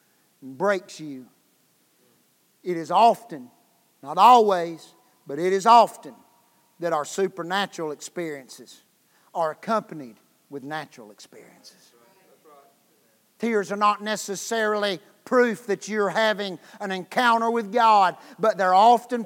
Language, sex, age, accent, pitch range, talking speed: English, male, 50-69, American, 195-300 Hz, 110 wpm